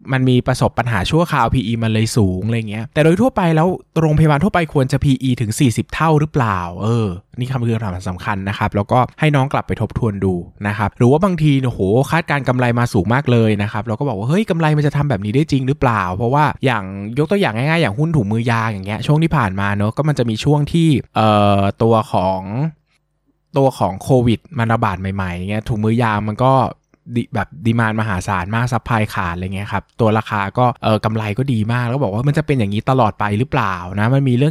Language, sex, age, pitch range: Thai, male, 20-39, 110-145 Hz